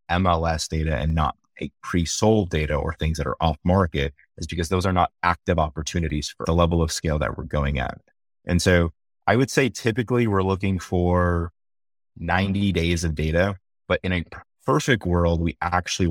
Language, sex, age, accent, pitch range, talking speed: English, male, 30-49, American, 80-95 Hz, 180 wpm